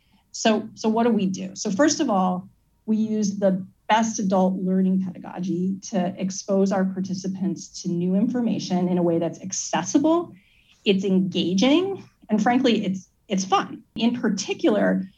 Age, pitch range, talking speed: 30-49, 185-220 Hz, 150 wpm